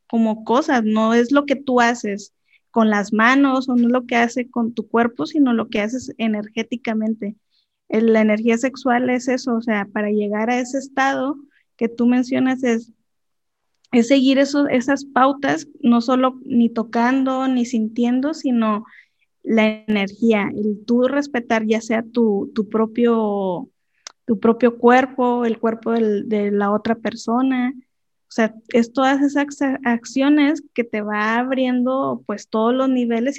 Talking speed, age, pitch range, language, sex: 160 wpm, 20-39, 225-265 Hz, Spanish, female